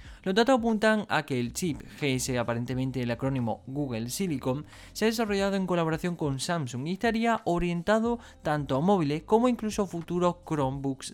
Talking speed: 165 wpm